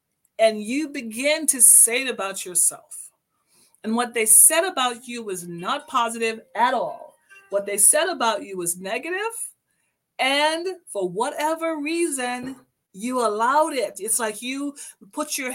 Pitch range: 225-305 Hz